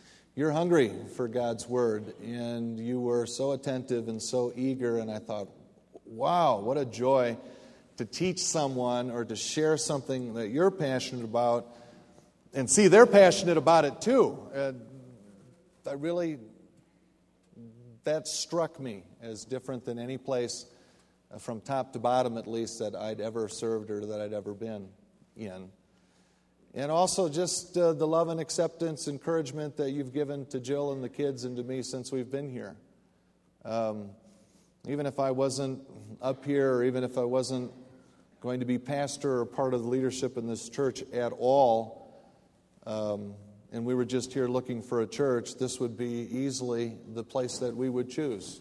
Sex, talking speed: male, 165 wpm